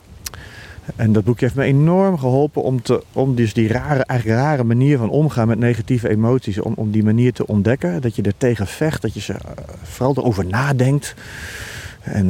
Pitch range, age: 105-135 Hz, 40-59